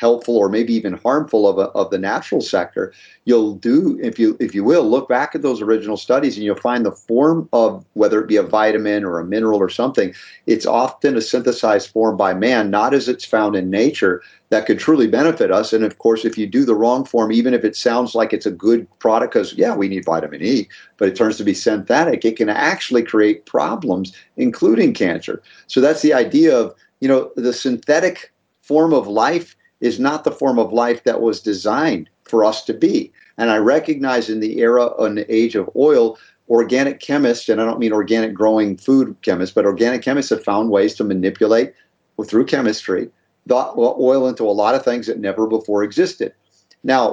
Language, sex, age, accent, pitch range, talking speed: English, male, 40-59, American, 110-125 Hz, 205 wpm